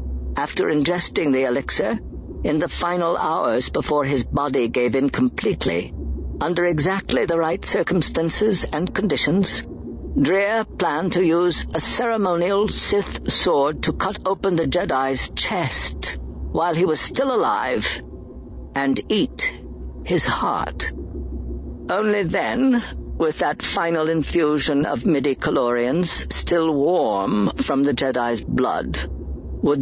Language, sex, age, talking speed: English, female, 60-79, 120 wpm